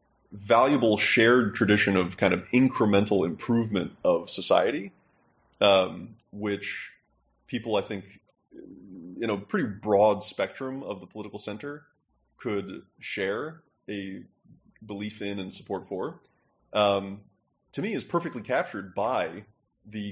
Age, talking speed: 20-39, 120 wpm